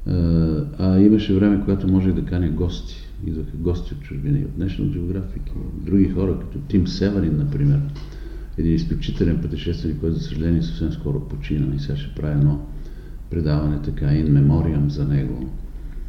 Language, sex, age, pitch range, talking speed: Bulgarian, male, 50-69, 75-100 Hz, 170 wpm